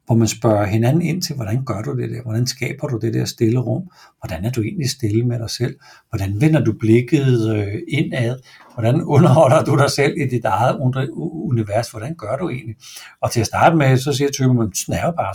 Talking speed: 215 wpm